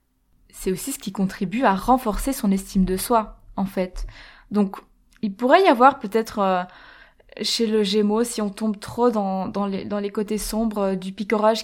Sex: female